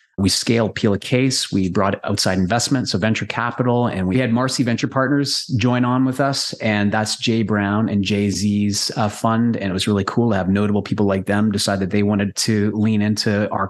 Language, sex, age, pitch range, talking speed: English, male, 30-49, 105-130 Hz, 220 wpm